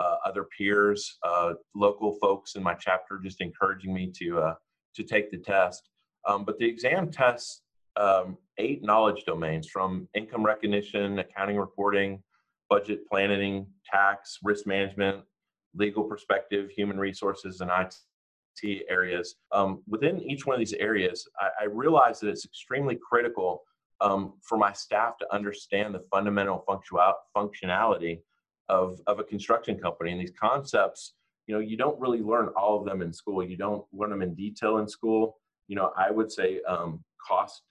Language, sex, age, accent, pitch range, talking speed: English, male, 30-49, American, 95-105 Hz, 160 wpm